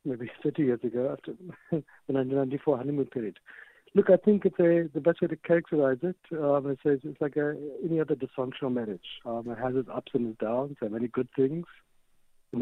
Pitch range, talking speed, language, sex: 120-150 Hz, 205 wpm, English, male